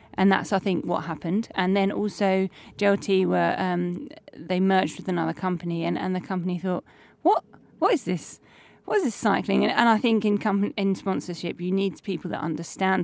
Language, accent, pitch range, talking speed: English, British, 175-205 Hz, 195 wpm